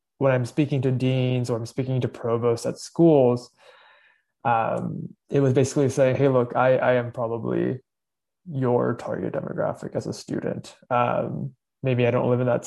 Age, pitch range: 20-39, 120-135 Hz